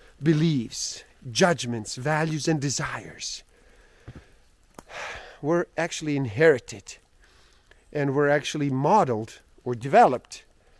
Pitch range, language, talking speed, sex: 120-165 Hz, English, 80 wpm, male